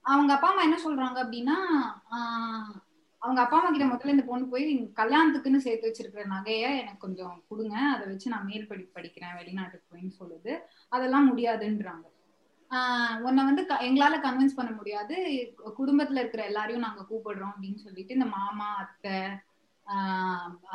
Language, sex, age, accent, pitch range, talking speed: Tamil, female, 20-39, native, 210-280 Hz, 150 wpm